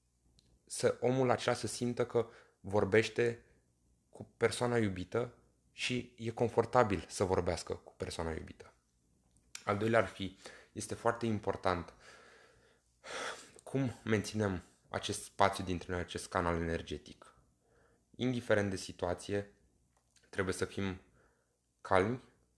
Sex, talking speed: male, 110 wpm